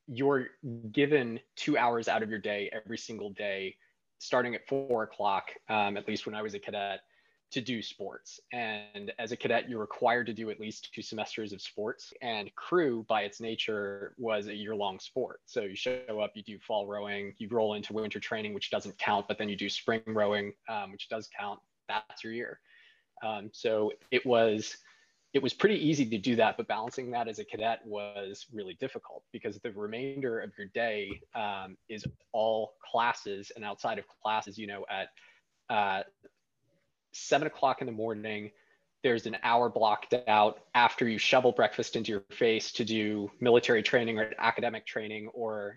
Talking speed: 180 wpm